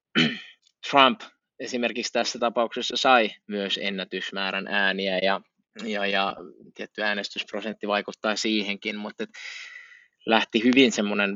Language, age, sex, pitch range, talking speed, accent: Finnish, 20-39, male, 100-120 Hz, 100 wpm, native